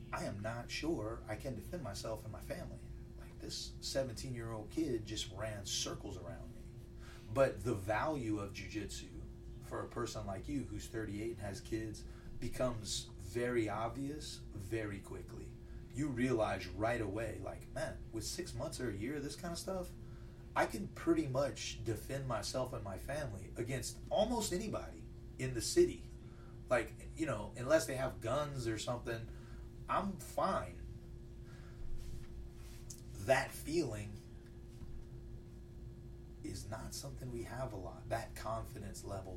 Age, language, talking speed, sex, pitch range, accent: 30-49, English, 145 wpm, male, 110-120 Hz, American